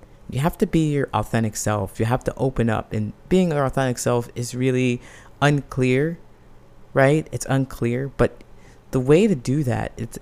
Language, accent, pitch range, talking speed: English, American, 110-135 Hz, 175 wpm